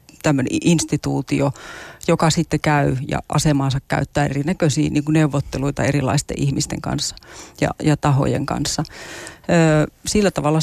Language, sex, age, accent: Finnish, female, 30-49, native